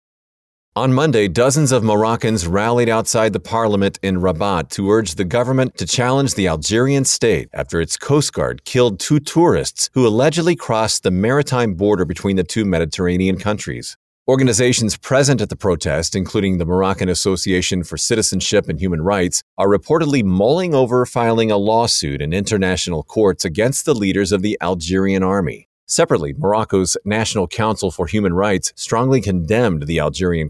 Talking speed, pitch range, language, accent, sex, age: 155 wpm, 95-120 Hz, English, American, male, 40-59